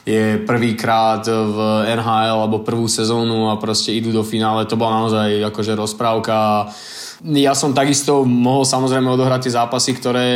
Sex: male